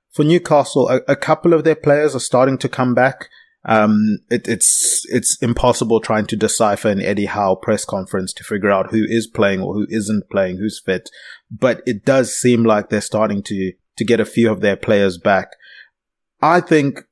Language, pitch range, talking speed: English, 105-120 Hz, 195 wpm